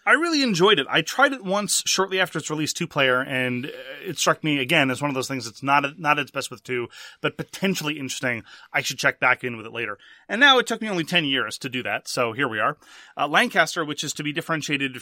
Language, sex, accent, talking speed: English, male, American, 250 wpm